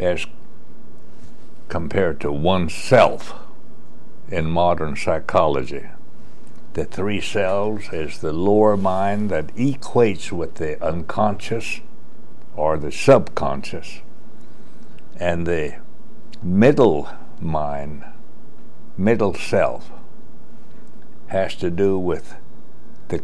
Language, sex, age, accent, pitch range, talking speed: English, male, 60-79, American, 80-100 Hz, 85 wpm